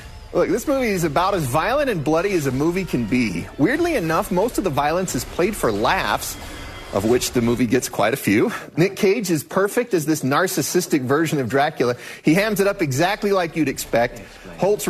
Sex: male